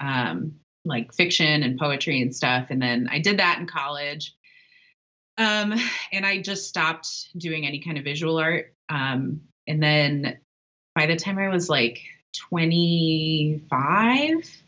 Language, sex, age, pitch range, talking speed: English, female, 20-39, 140-175 Hz, 145 wpm